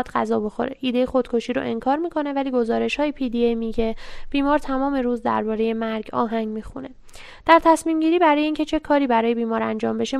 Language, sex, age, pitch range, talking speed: Persian, female, 10-29, 225-275 Hz, 175 wpm